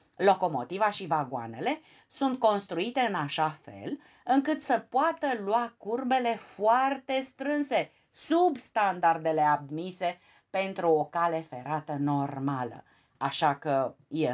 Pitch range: 150-235 Hz